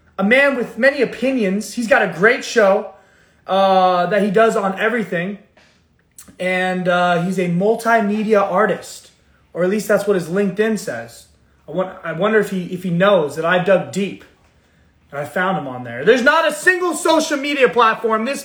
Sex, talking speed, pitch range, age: male, 180 wpm, 180-240 Hz, 20-39